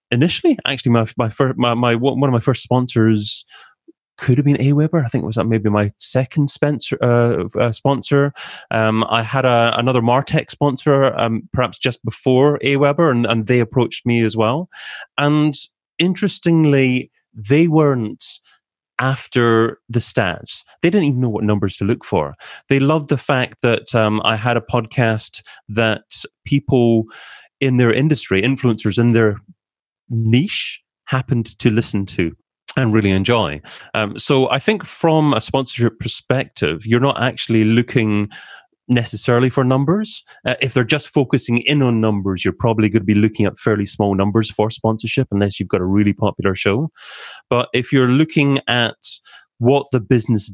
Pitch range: 110-135 Hz